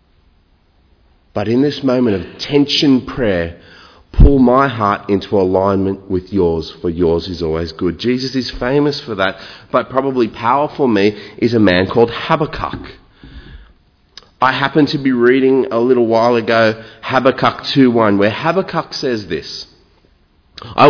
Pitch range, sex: 100-150 Hz, male